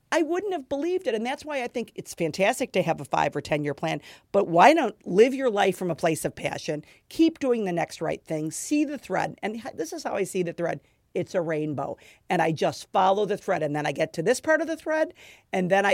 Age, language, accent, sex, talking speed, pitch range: 50-69, English, American, female, 260 wpm, 170-230 Hz